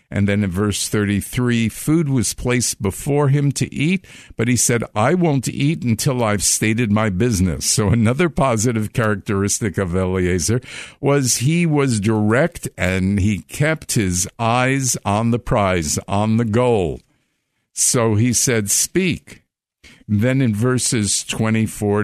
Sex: male